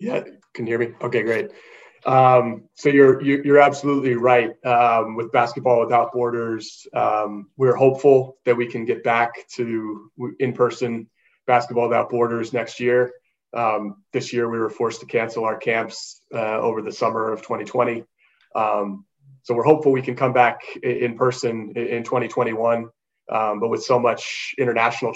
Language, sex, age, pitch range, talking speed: French, male, 30-49, 110-130 Hz, 165 wpm